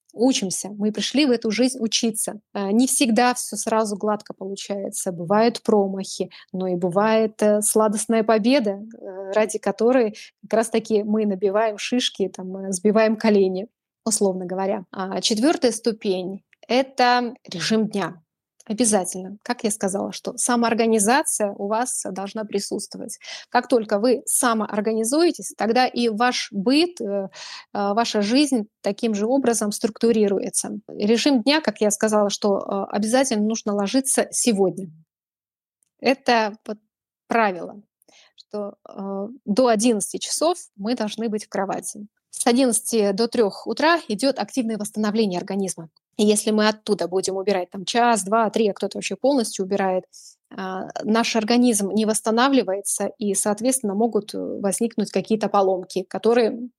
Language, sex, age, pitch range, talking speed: Russian, female, 20-39, 200-240 Hz, 125 wpm